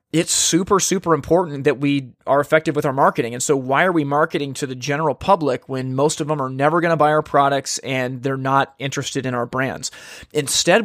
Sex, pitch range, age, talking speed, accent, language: male, 135-160 Hz, 30-49, 220 wpm, American, English